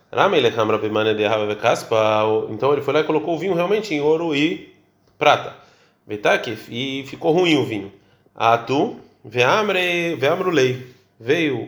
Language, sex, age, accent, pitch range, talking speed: Portuguese, male, 20-39, Brazilian, 115-160 Hz, 120 wpm